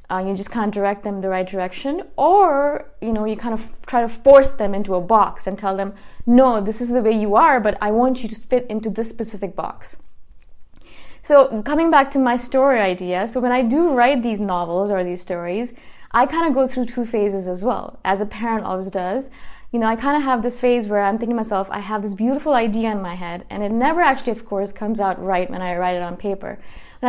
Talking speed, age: 245 wpm, 20-39